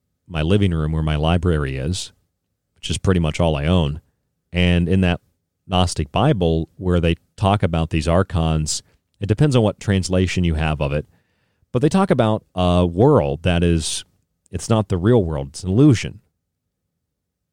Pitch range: 85-95 Hz